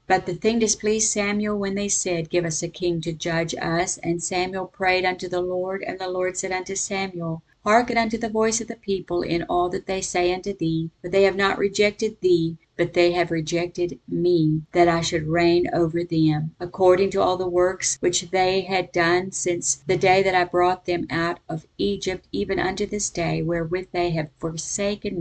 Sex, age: female, 50-69